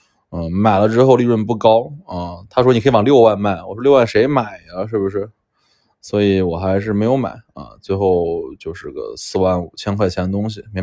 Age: 20-39